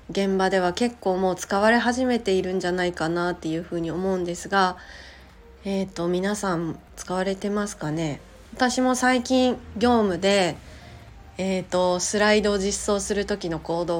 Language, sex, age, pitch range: Japanese, female, 20-39, 165-205 Hz